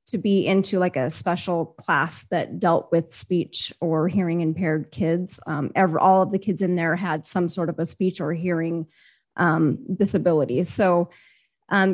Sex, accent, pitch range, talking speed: female, American, 170-195 Hz, 175 wpm